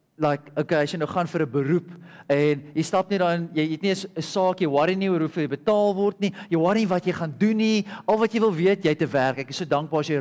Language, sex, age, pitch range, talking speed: English, male, 40-59, 150-195 Hz, 295 wpm